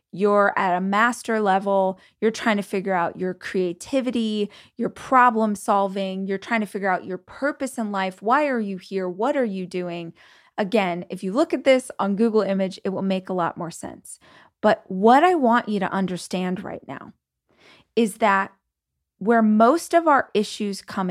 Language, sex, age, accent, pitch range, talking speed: English, female, 20-39, American, 190-235 Hz, 185 wpm